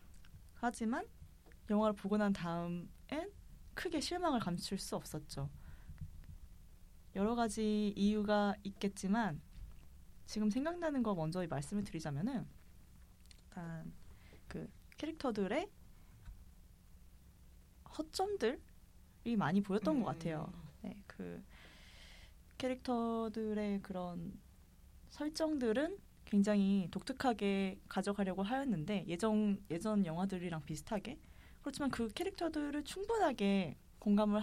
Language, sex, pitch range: Korean, female, 150-225 Hz